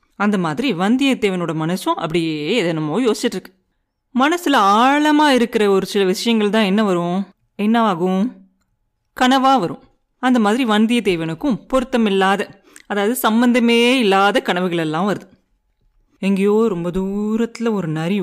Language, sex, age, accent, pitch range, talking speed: Tamil, female, 30-49, native, 180-240 Hz, 115 wpm